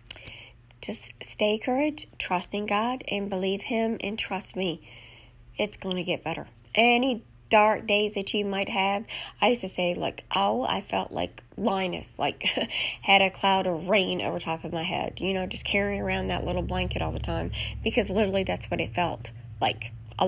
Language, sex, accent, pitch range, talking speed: English, female, American, 125-205 Hz, 190 wpm